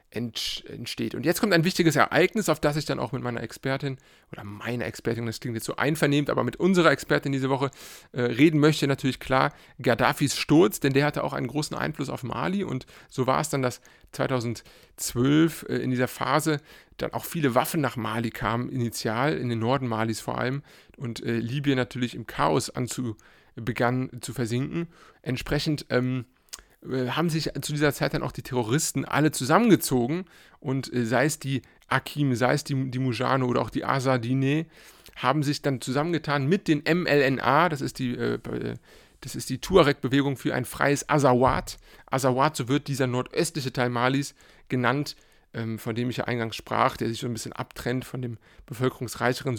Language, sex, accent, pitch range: German, male, German, 120-150 Hz